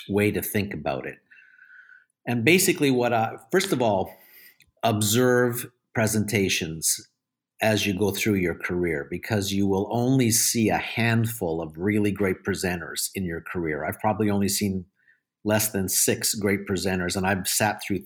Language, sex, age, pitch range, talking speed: English, male, 50-69, 95-110 Hz, 155 wpm